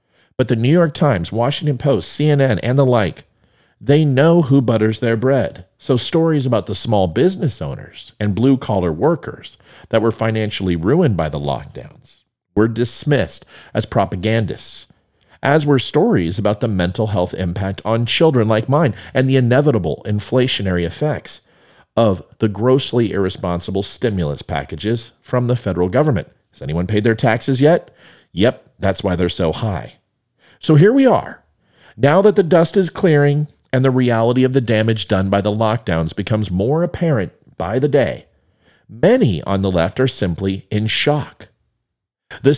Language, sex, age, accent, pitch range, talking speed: English, male, 40-59, American, 100-135 Hz, 160 wpm